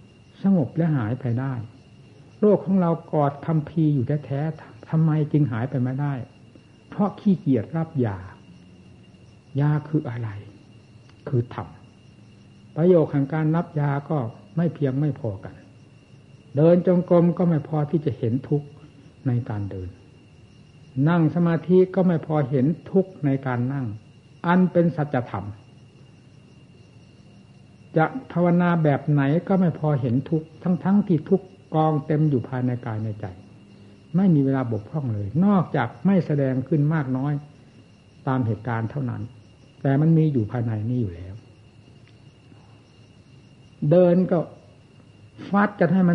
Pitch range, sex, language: 115-160 Hz, male, Thai